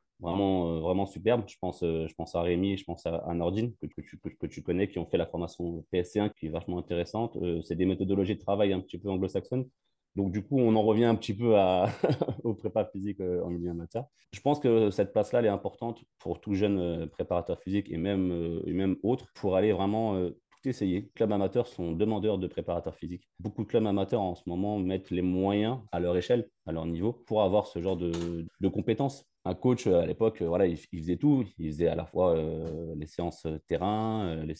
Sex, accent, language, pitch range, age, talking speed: male, French, French, 85-105 Hz, 30-49, 230 wpm